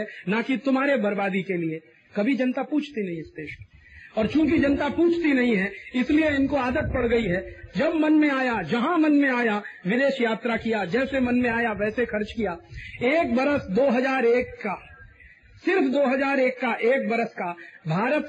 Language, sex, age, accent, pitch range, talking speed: Hindi, male, 40-59, native, 205-265 Hz, 175 wpm